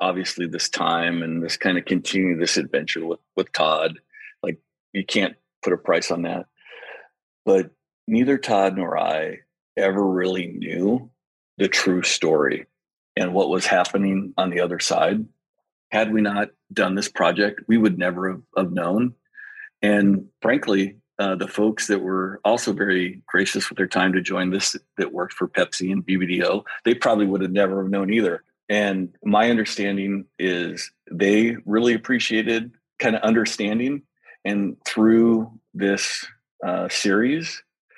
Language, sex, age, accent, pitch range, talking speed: English, male, 40-59, American, 95-110 Hz, 155 wpm